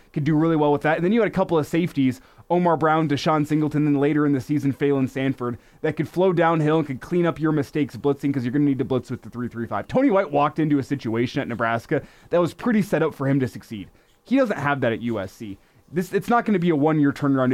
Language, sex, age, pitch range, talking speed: English, male, 20-39, 135-175 Hz, 270 wpm